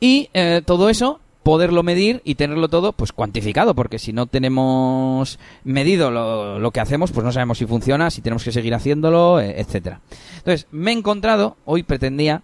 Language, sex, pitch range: Spanish, male, 120-165 Hz